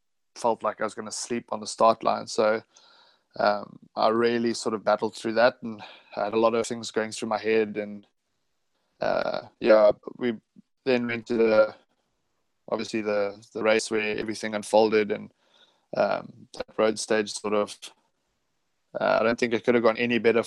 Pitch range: 105-115 Hz